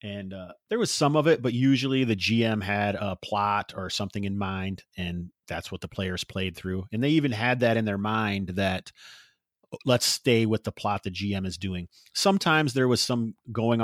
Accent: American